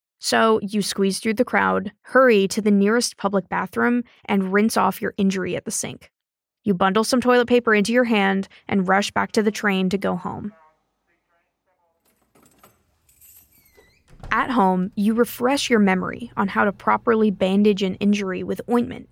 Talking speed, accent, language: 165 wpm, American, English